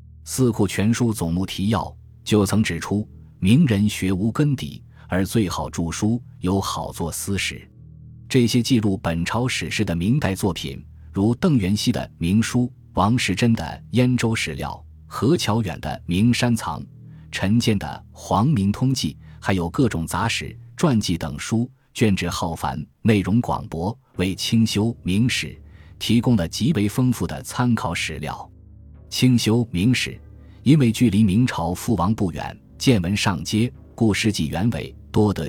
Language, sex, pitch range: Chinese, male, 85-115 Hz